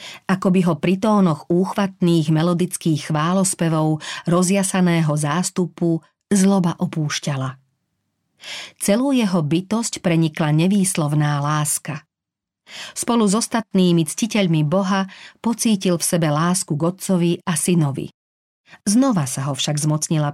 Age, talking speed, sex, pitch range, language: 40-59, 100 wpm, female, 155-200 Hz, Slovak